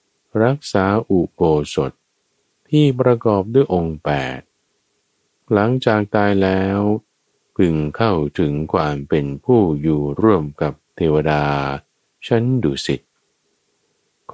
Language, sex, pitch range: Thai, male, 75-110 Hz